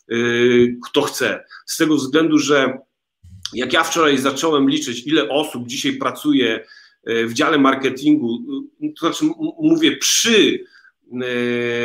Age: 40-59